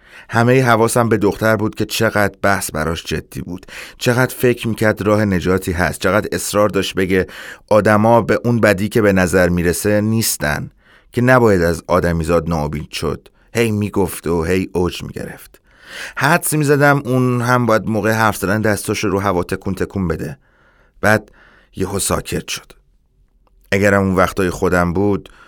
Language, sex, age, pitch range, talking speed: Persian, male, 30-49, 95-115 Hz, 160 wpm